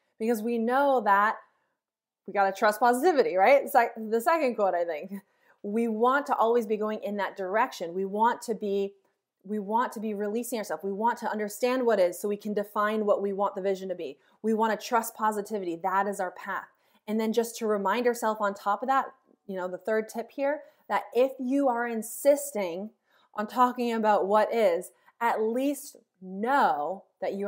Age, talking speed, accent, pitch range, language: 20-39, 205 wpm, American, 200-250 Hz, English